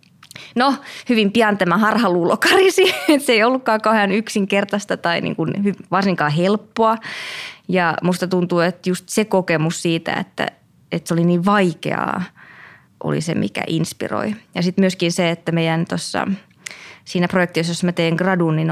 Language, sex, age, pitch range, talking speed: Finnish, female, 20-39, 170-205 Hz, 140 wpm